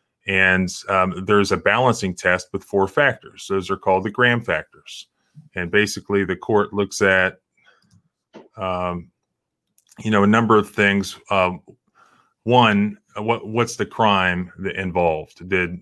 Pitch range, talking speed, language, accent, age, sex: 90-105 Hz, 135 wpm, English, American, 30-49, male